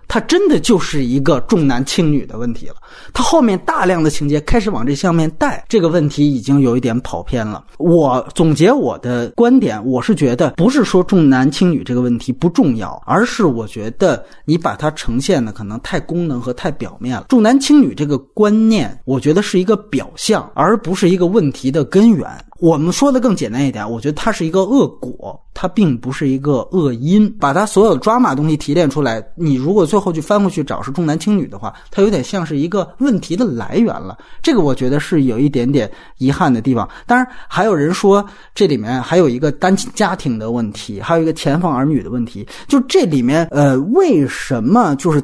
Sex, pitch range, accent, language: male, 135-210 Hz, native, Chinese